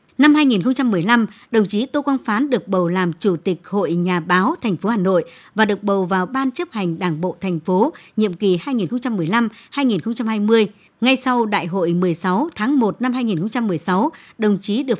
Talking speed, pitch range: 180 wpm, 185-250 Hz